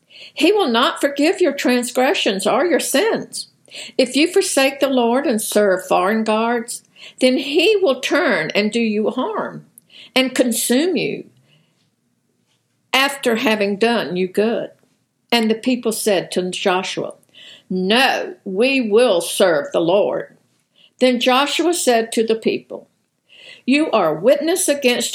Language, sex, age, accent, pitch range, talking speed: English, female, 60-79, American, 200-265 Hz, 135 wpm